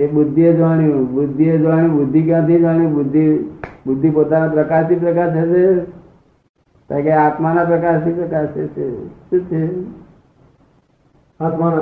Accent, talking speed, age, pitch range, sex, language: native, 55 wpm, 50-69, 130-155 Hz, male, Gujarati